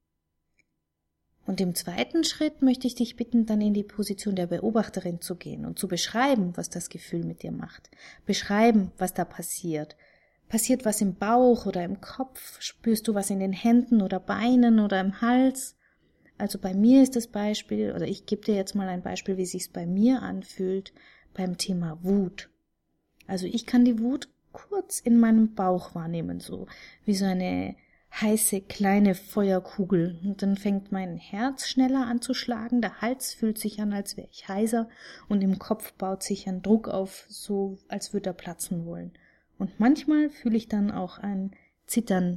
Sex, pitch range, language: female, 185-225 Hz, German